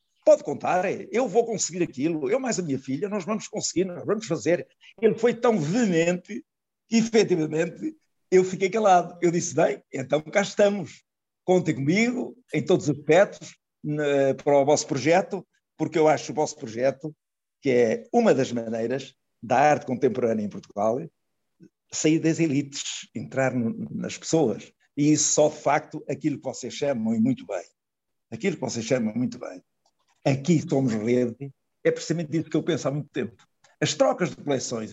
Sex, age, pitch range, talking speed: male, 60-79, 140-195 Hz, 170 wpm